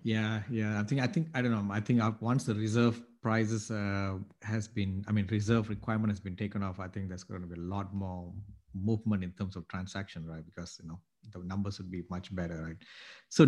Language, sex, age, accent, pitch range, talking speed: English, male, 50-69, Indian, 95-110 Hz, 230 wpm